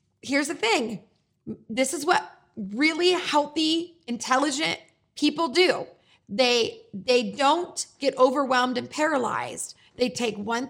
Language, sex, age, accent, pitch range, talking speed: English, female, 30-49, American, 230-305 Hz, 120 wpm